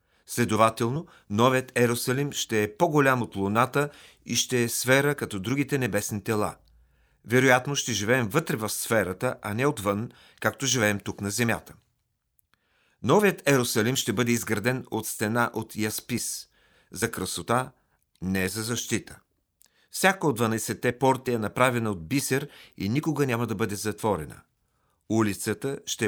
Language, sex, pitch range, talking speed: Bulgarian, male, 105-135 Hz, 140 wpm